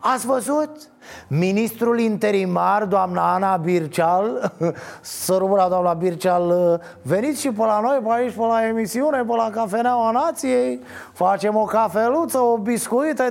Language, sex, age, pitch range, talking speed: Romanian, male, 30-49, 170-225 Hz, 135 wpm